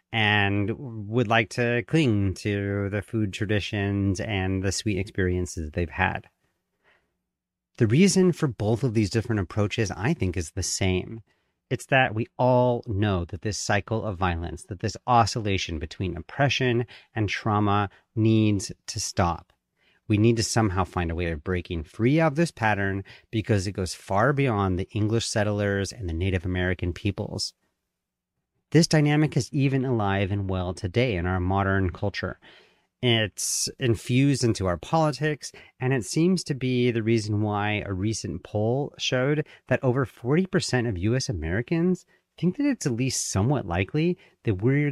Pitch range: 95-125 Hz